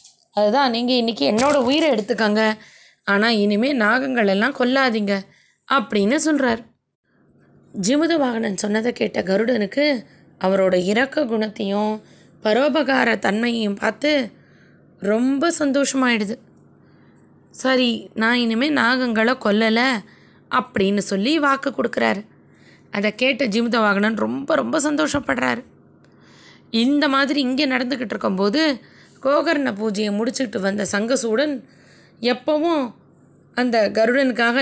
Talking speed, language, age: 90 wpm, Tamil, 20-39